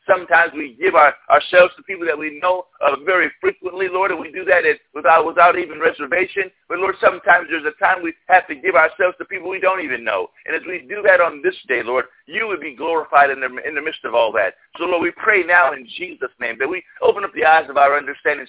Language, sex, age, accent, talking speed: English, male, 50-69, American, 255 wpm